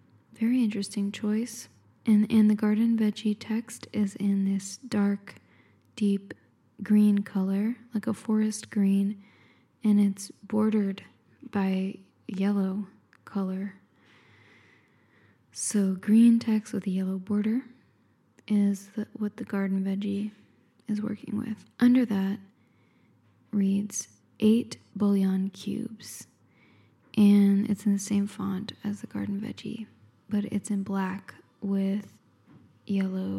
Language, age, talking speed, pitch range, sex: English, 10-29, 115 wpm, 190-215 Hz, female